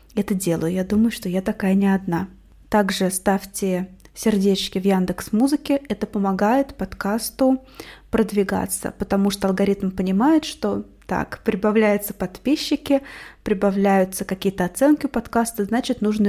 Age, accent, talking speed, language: 20-39, native, 120 wpm, Russian